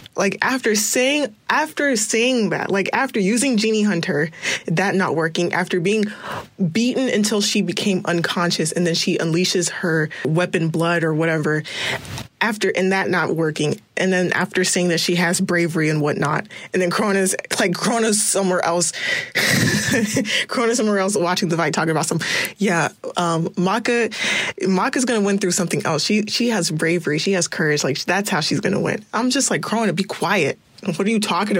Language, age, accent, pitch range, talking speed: English, 20-39, American, 175-220 Hz, 180 wpm